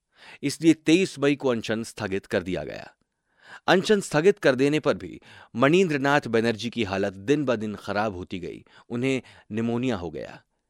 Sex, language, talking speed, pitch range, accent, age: male, Hindi, 165 wpm, 105-140 Hz, native, 30-49